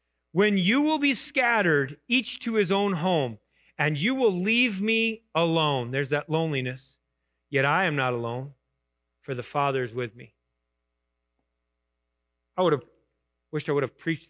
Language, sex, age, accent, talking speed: English, male, 30-49, American, 160 wpm